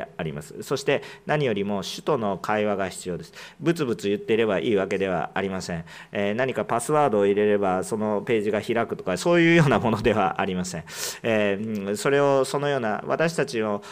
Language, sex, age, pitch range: Japanese, male, 40-59, 100-150 Hz